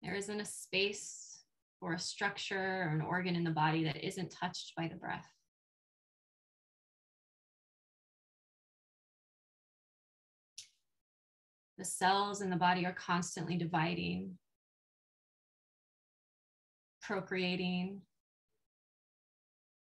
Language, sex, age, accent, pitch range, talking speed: English, female, 20-39, American, 160-185 Hz, 85 wpm